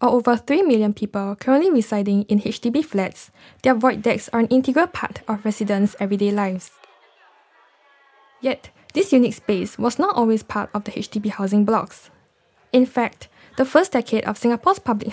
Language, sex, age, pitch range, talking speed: English, female, 10-29, 200-250 Hz, 165 wpm